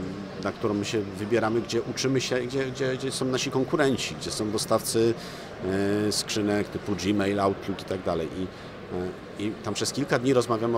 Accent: native